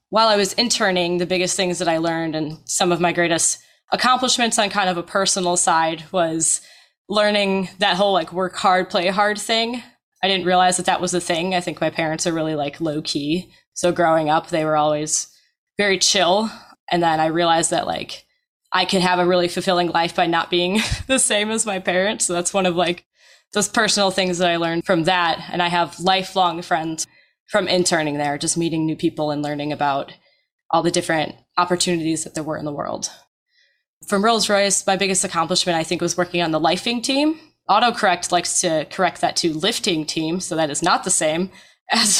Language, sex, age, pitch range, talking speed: English, female, 20-39, 165-195 Hz, 205 wpm